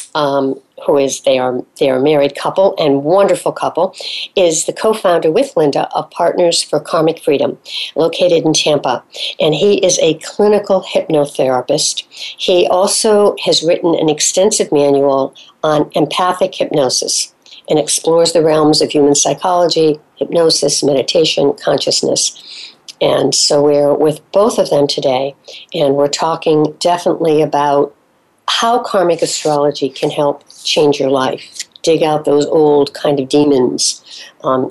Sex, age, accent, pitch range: female, 60-79, American, 145-185 Hz